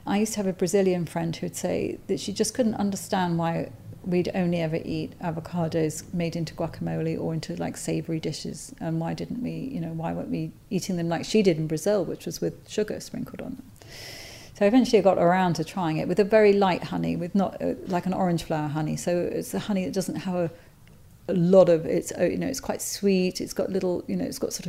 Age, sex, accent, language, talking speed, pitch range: 40-59, female, British, English, 240 wpm, 160-190 Hz